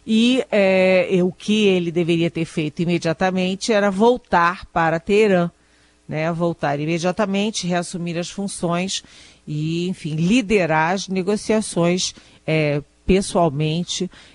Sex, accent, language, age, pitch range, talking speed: female, Brazilian, Portuguese, 40-59, 165-195 Hz, 110 wpm